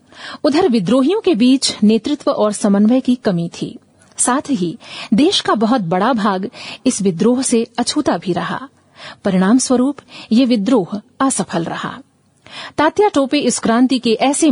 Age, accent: 40-59, native